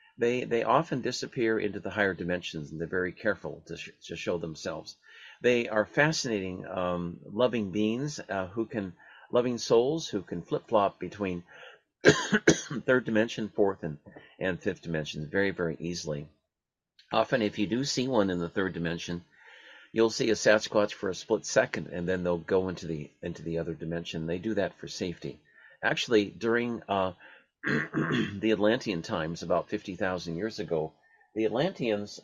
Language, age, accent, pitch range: English, 50-69, American, 90-115 Hz